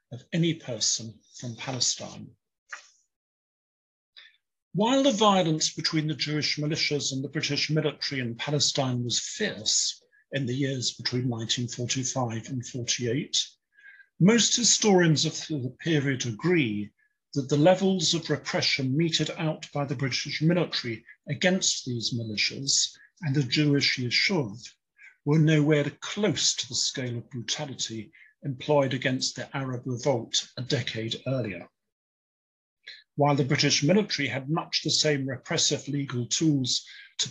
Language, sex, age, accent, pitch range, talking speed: English, male, 50-69, British, 125-160 Hz, 125 wpm